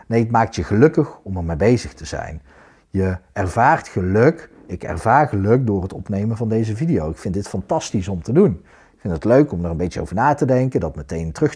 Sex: male